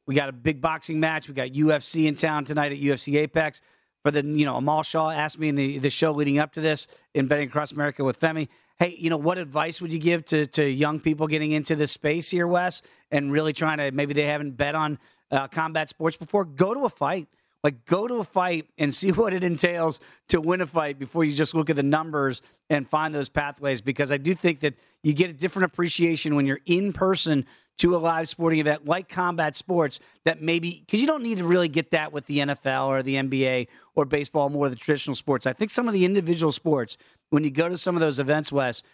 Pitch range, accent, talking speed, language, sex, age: 140-165 Hz, American, 245 wpm, English, male, 40-59